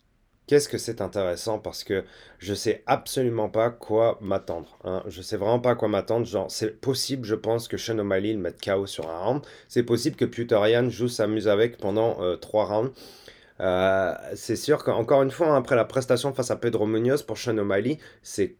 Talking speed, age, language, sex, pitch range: 195 wpm, 30-49, French, male, 100-130 Hz